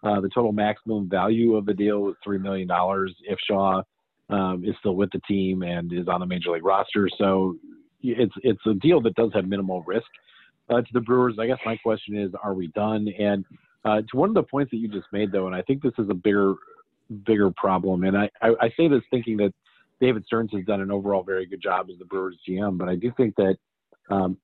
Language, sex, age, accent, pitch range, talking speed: English, male, 40-59, American, 95-115 Hz, 235 wpm